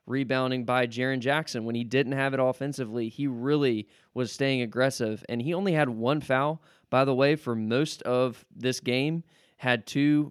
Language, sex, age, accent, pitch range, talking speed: English, male, 20-39, American, 120-135 Hz, 180 wpm